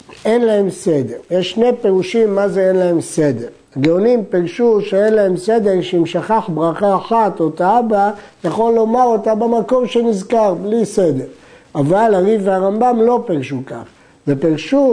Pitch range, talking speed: 170-225 Hz, 145 wpm